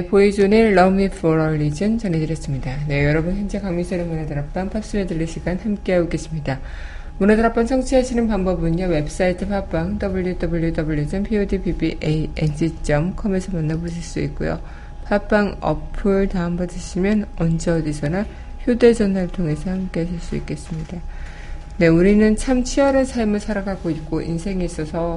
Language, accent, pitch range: Korean, native, 160-200 Hz